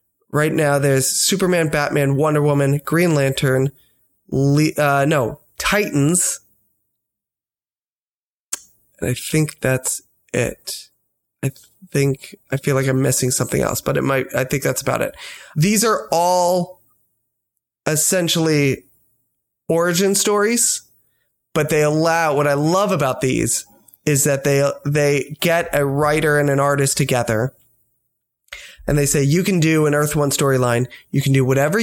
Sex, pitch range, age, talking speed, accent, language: male, 135-165 Hz, 20-39, 140 wpm, American, English